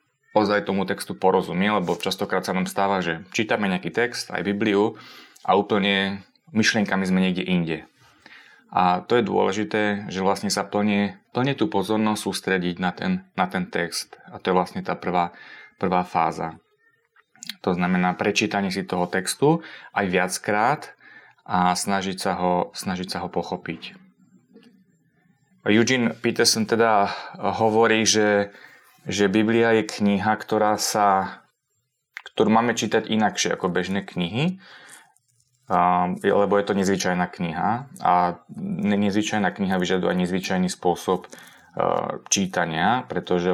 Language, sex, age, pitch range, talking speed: English, male, 30-49, 90-110 Hz, 130 wpm